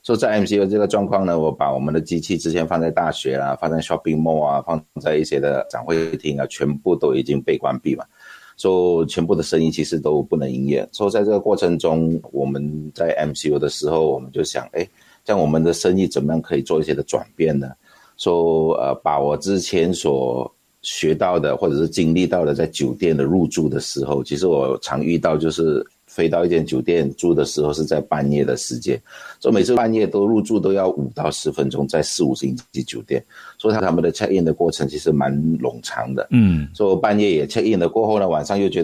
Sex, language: male, Chinese